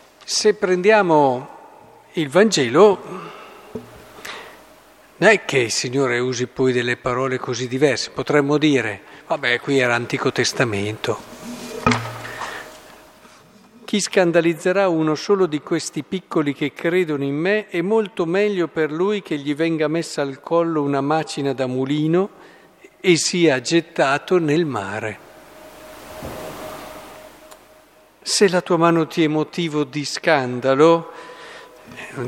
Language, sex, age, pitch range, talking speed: Italian, male, 50-69, 130-170 Hz, 115 wpm